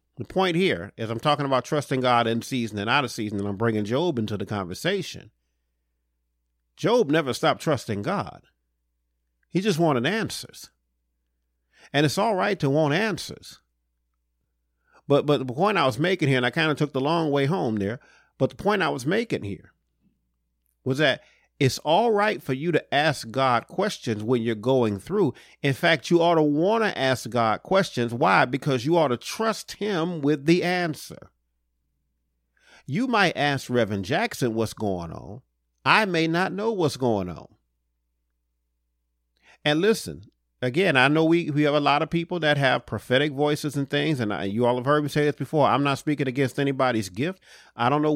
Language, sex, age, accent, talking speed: English, male, 40-59, American, 185 wpm